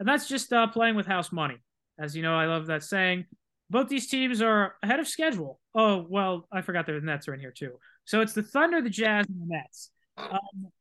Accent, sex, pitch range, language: American, male, 160-215 Hz, English